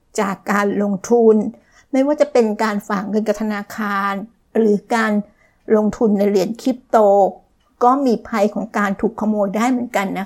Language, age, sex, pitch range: Thai, 60-79, female, 205-245 Hz